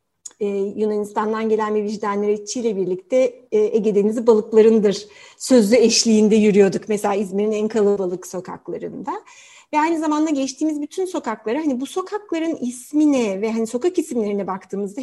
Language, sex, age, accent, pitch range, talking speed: Turkish, female, 60-79, native, 210-270 Hz, 140 wpm